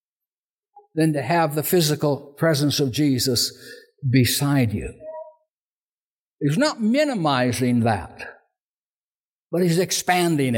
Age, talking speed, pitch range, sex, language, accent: 60-79, 95 wpm, 170-230 Hz, male, English, American